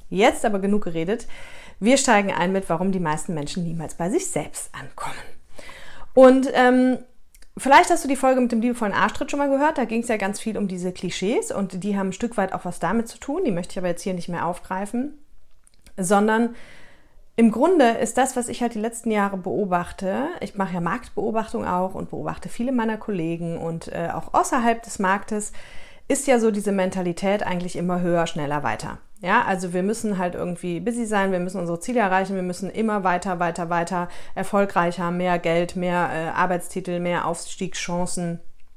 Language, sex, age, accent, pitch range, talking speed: German, female, 30-49, German, 180-230 Hz, 195 wpm